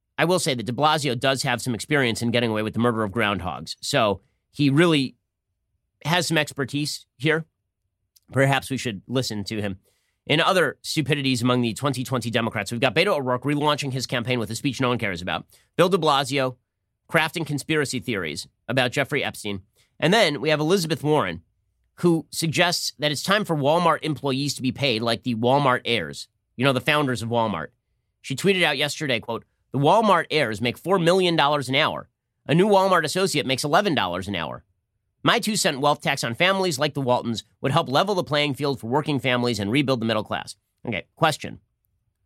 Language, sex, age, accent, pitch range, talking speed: English, male, 30-49, American, 110-150 Hz, 190 wpm